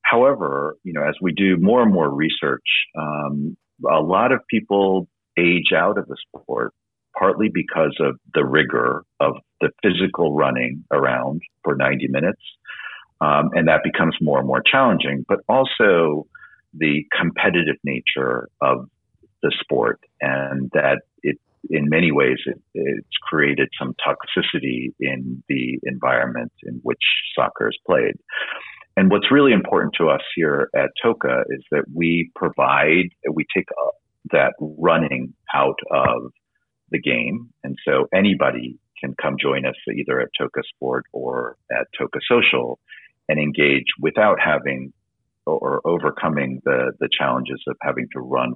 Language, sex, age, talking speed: English, male, 50-69, 145 wpm